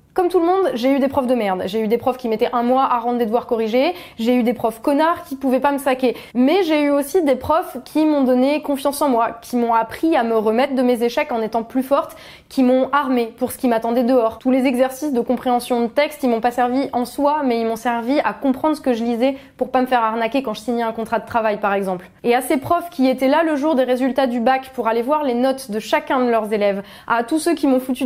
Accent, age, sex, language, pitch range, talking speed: French, 20-39, female, French, 240-285 Hz, 280 wpm